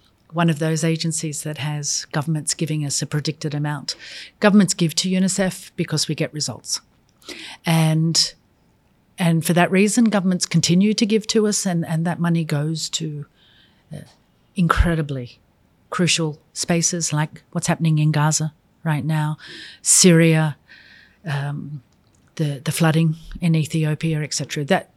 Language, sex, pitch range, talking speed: Vietnamese, female, 150-180 Hz, 135 wpm